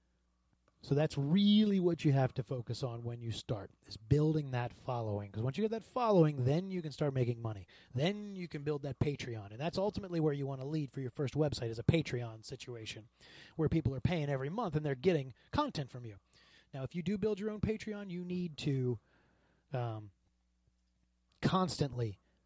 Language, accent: English, American